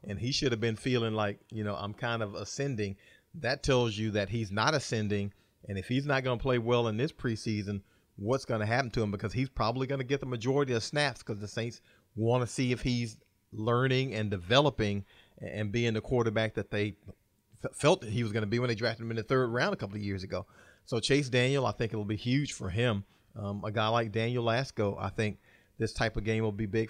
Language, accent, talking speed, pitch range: English, American, 245 wpm, 105-120 Hz